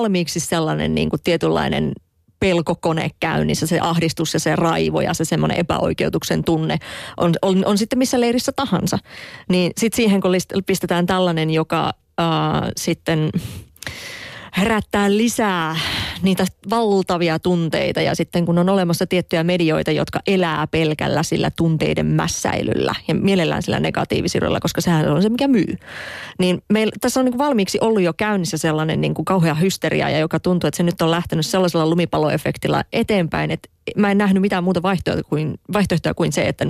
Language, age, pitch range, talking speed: Finnish, 30-49, 160-195 Hz, 160 wpm